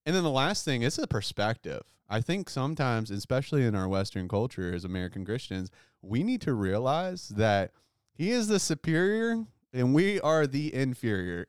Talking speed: 170 wpm